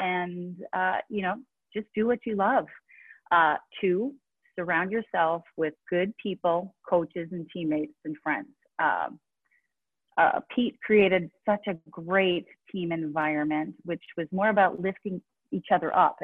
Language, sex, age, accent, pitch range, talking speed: English, female, 30-49, American, 165-215 Hz, 140 wpm